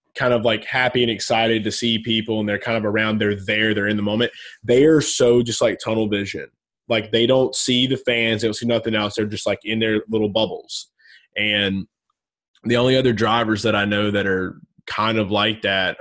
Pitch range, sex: 105-120 Hz, male